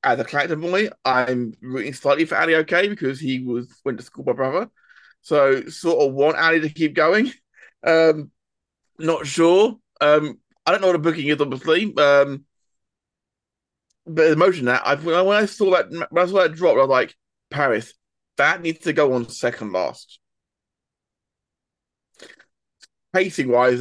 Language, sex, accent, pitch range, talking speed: English, male, British, 140-190 Hz, 165 wpm